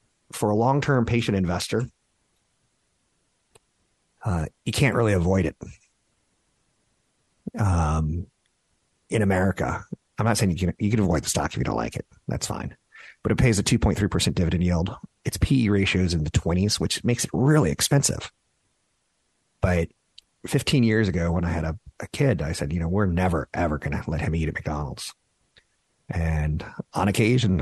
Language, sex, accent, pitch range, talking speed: English, male, American, 85-110 Hz, 165 wpm